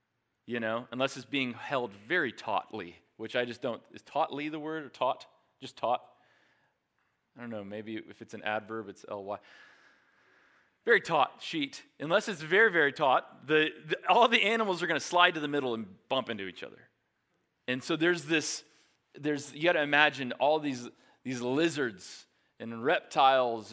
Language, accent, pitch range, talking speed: English, American, 110-150 Hz, 175 wpm